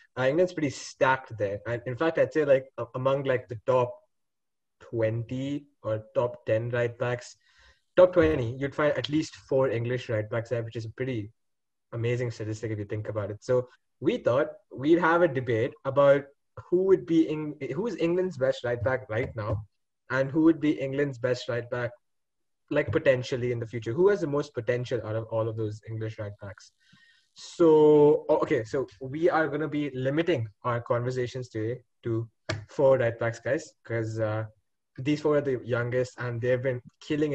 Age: 20-39